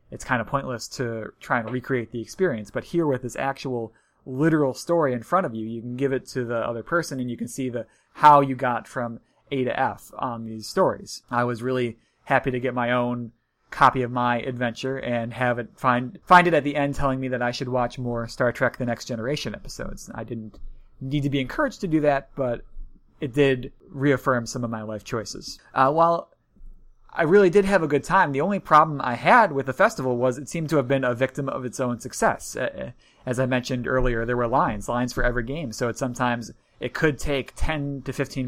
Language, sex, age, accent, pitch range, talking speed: English, male, 30-49, American, 120-140 Hz, 225 wpm